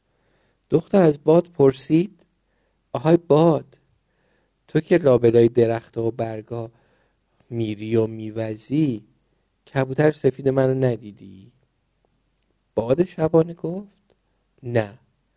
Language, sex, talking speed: Persian, male, 90 wpm